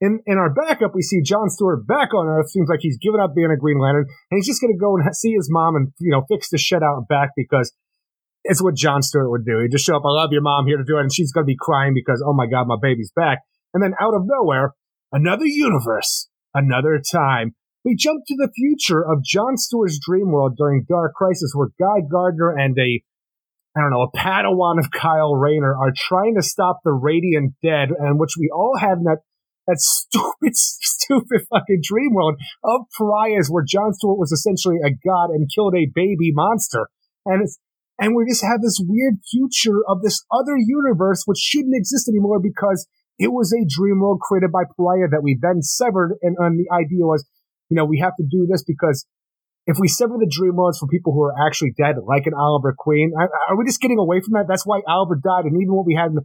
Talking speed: 230 wpm